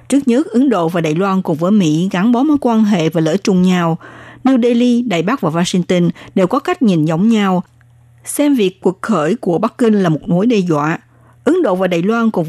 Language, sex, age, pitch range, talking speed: Vietnamese, female, 60-79, 165-230 Hz, 235 wpm